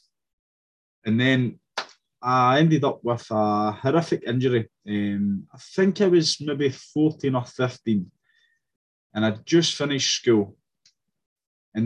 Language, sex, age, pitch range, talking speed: English, male, 20-39, 110-150 Hz, 120 wpm